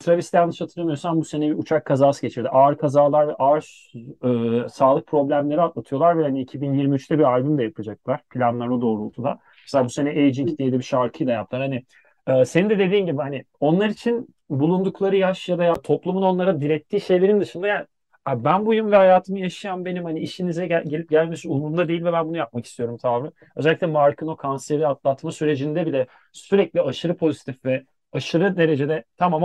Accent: native